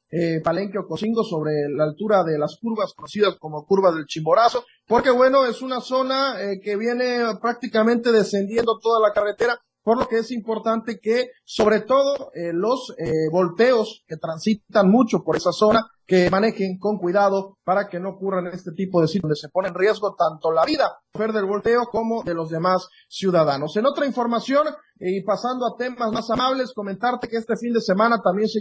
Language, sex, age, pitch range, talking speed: Spanish, male, 30-49, 185-240 Hz, 190 wpm